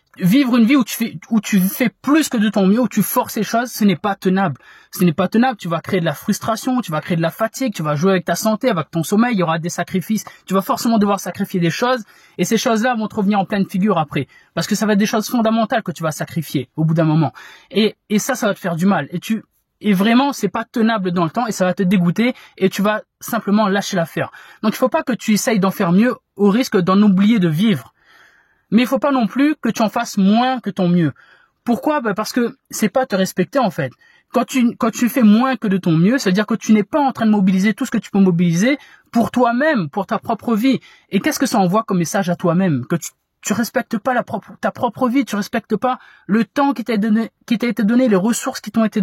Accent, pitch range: French, 190-245 Hz